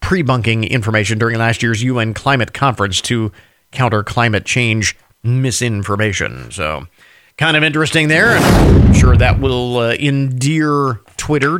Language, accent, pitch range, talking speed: English, American, 120-170 Hz, 135 wpm